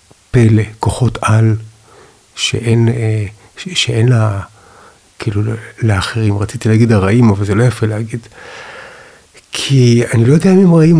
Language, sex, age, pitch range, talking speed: Hebrew, male, 60-79, 105-120 Hz, 125 wpm